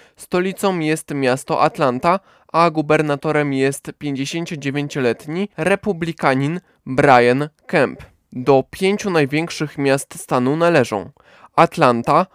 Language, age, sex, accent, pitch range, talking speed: Polish, 20-39, male, native, 135-170 Hz, 85 wpm